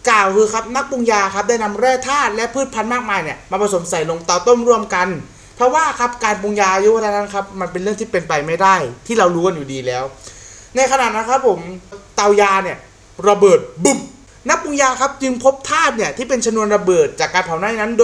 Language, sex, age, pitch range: Thai, male, 30-49, 155-230 Hz